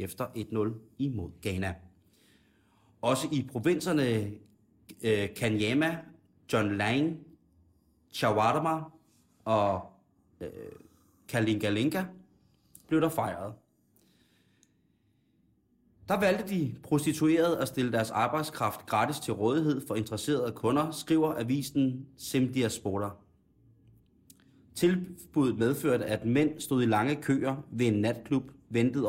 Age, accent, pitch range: 30-49, native, 105-145 Hz